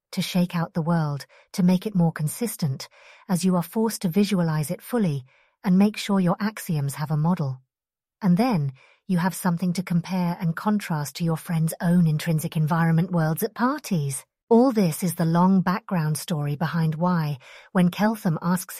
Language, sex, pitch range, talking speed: English, female, 160-195 Hz, 180 wpm